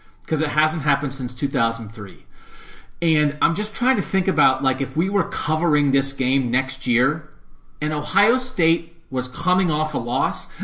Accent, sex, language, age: American, male, English, 40-59